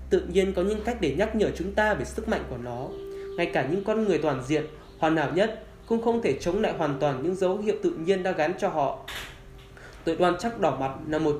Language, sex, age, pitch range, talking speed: Vietnamese, male, 10-29, 145-205 Hz, 255 wpm